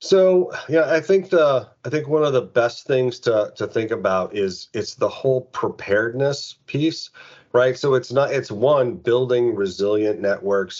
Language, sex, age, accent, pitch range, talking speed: English, male, 40-59, American, 100-130 Hz, 170 wpm